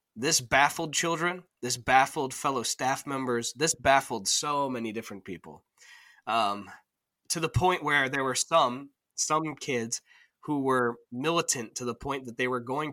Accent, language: American, English